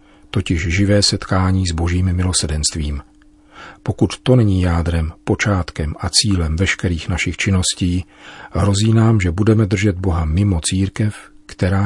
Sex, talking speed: male, 125 wpm